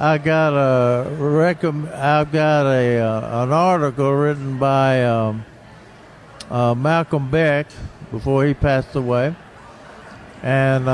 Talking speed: 105 wpm